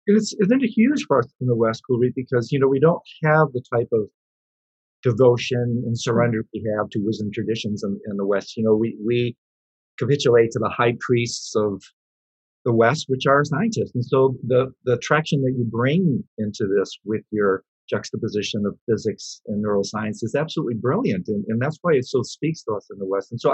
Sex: male